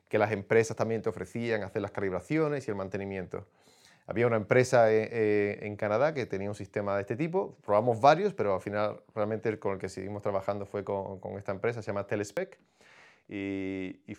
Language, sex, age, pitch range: Spanish, male, 30-49, 100-120 Hz